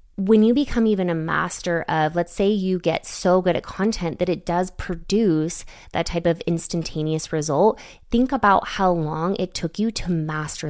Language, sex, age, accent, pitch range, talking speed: English, female, 20-39, American, 170-215 Hz, 185 wpm